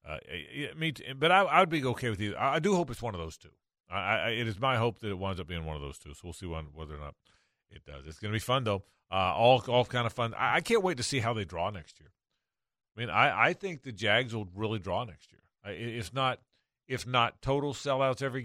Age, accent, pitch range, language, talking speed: 40-59, American, 105-135 Hz, English, 270 wpm